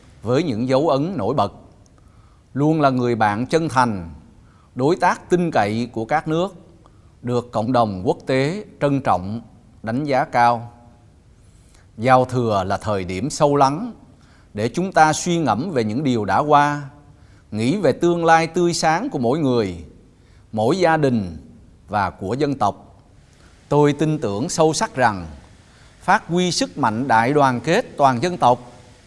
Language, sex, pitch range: Vietnamese, male, 110-155 Hz